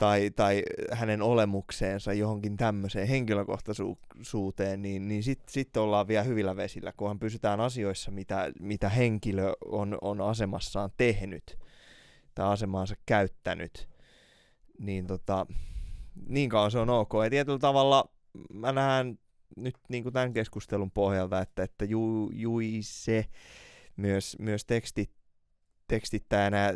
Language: Finnish